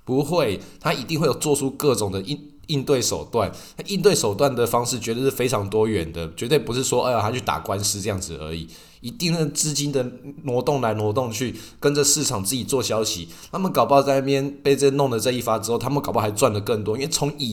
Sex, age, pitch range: male, 20-39, 105-140 Hz